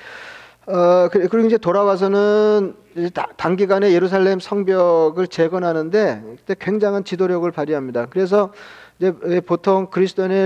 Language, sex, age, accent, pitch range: Korean, male, 40-59, native, 170-195 Hz